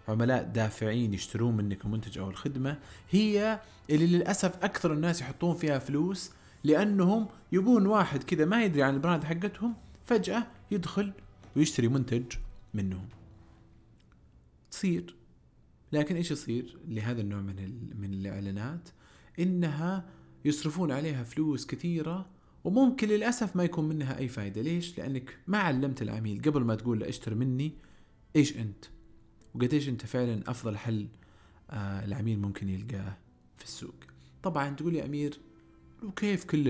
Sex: male